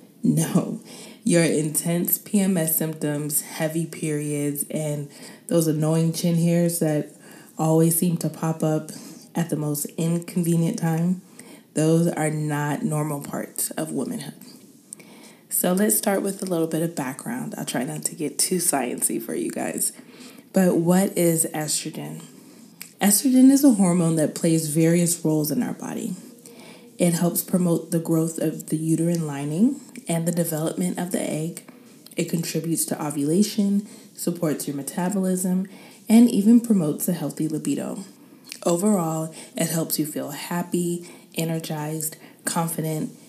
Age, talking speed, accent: 20-39, 140 wpm, American